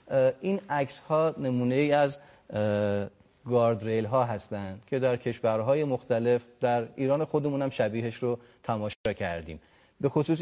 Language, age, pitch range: Persian, 30-49, 105-130 Hz